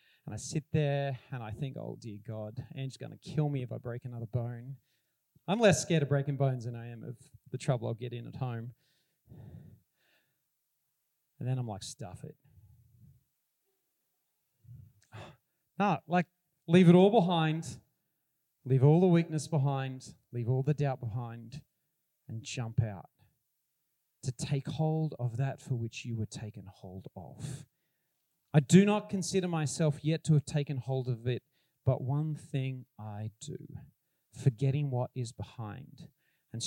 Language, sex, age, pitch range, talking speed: English, male, 40-59, 120-150 Hz, 155 wpm